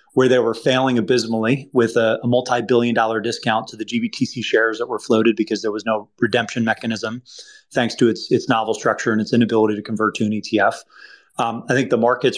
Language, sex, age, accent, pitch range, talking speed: English, male, 30-49, American, 115-135 Hz, 210 wpm